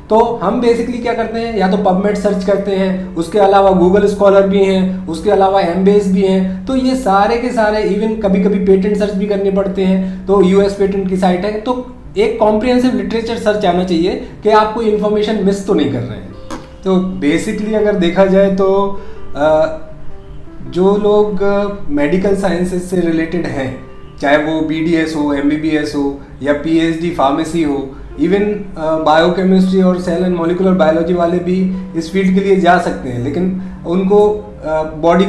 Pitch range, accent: 170-210 Hz, native